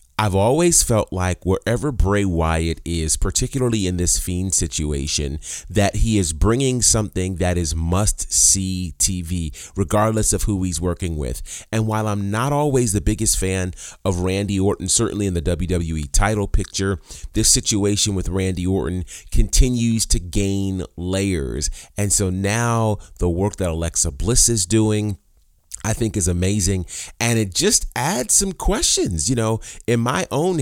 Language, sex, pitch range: English, male, 90-115 Hz